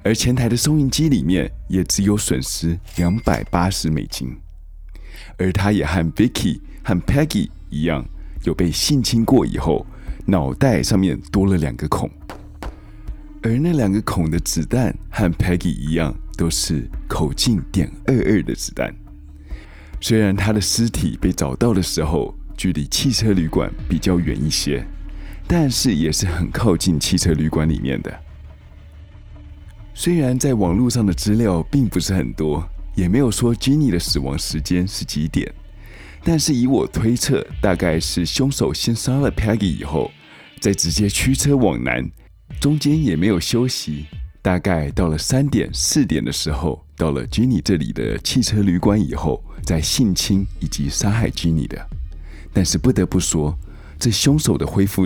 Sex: male